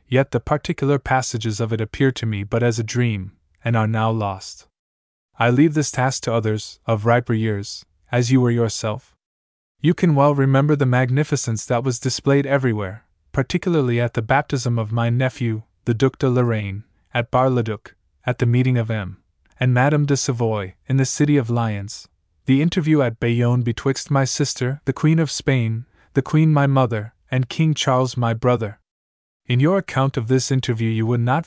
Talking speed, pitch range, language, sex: 185 wpm, 110-135 Hz, English, male